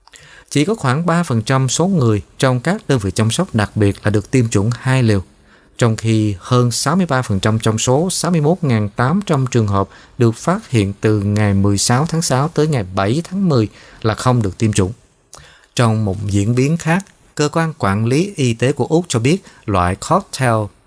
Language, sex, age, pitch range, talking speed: Vietnamese, male, 20-39, 105-145 Hz, 185 wpm